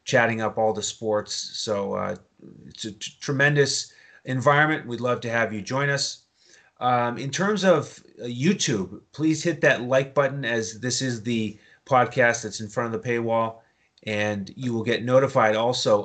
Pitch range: 110-130 Hz